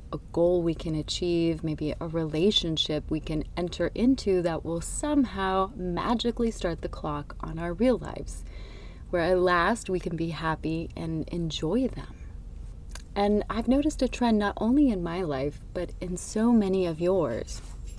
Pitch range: 165-215 Hz